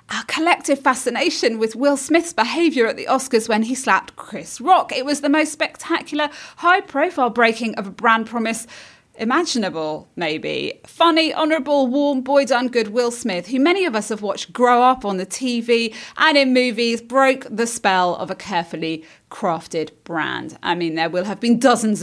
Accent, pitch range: British, 200-285 Hz